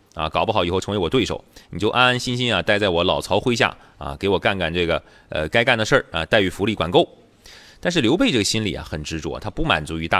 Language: Chinese